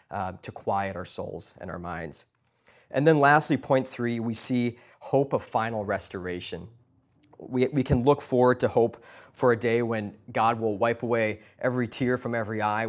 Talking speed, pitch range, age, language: 180 wpm, 105-125 Hz, 20-39, English